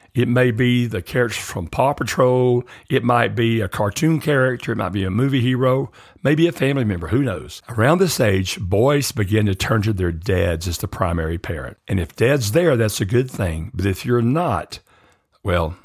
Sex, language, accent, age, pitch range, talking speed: male, English, American, 60-79, 100-130 Hz, 200 wpm